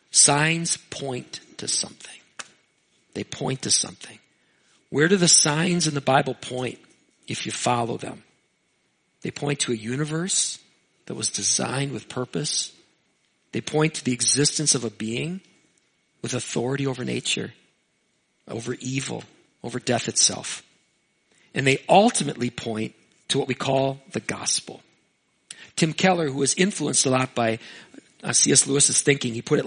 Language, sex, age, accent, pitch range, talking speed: English, male, 40-59, American, 135-200 Hz, 145 wpm